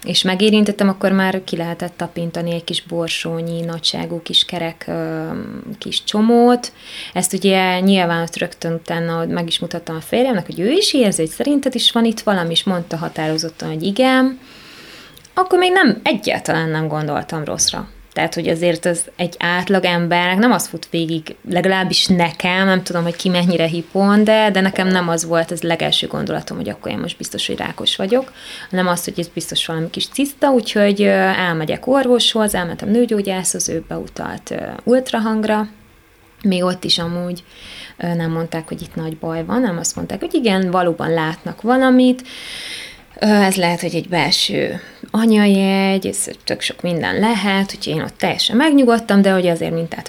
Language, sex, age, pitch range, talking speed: Hungarian, female, 20-39, 170-215 Hz, 165 wpm